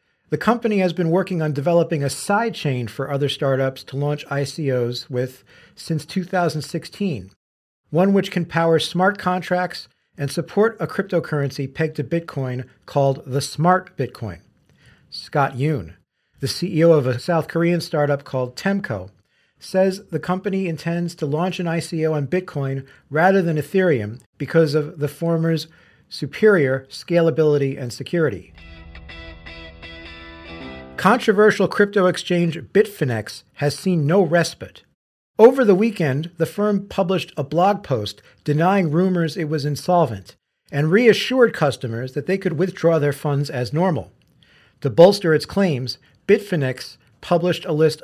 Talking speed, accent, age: 135 wpm, American, 50-69